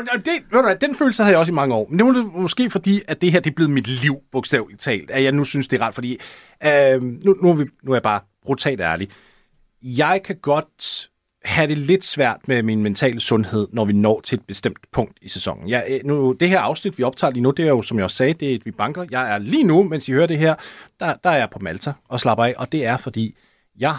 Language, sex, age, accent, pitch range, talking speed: Danish, male, 30-49, native, 110-150 Hz, 265 wpm